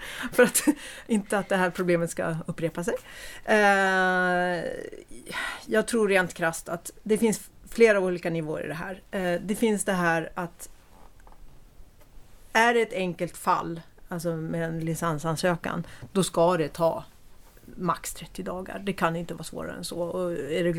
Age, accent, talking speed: 40-59, native, 155 wpm